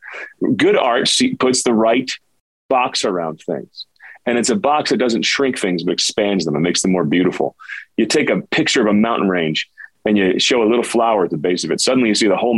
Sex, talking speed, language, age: male, 230 wpm, English, 30-49